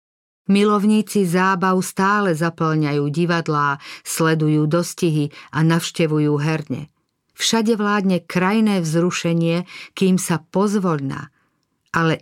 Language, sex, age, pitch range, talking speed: Slovak, female, 50-69, 155-190 Hz, 90 wpm